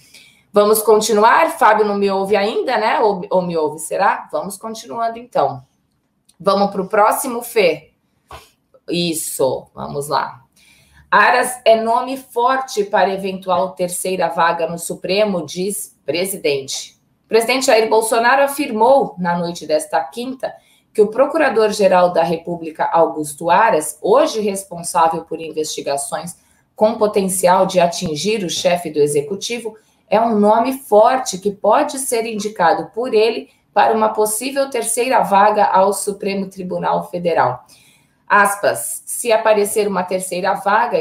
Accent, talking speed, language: Brazilian, 130 wpm, Portuguese